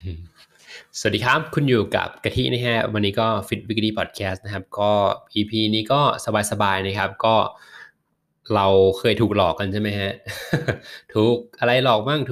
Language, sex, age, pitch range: Thai, male, 20-39, 100-125 Hz